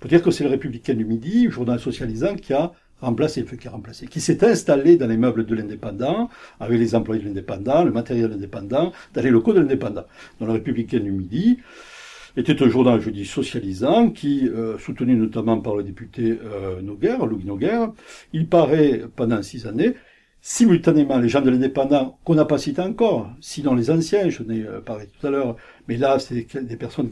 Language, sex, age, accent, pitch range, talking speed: French, male, 60-79, French, 115-160 Hz, 200 wpm